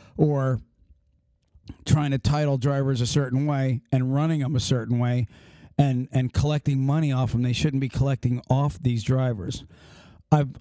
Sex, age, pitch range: male, 40-59, 130-150 Hz